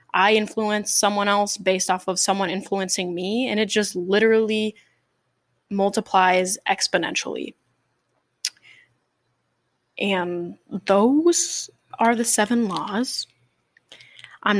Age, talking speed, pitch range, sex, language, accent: 10-29, 95 wpm, 190-230 Hz, female, English, American